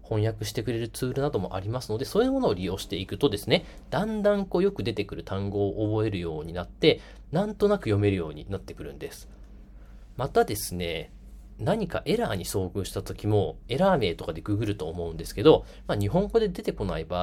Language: Japanese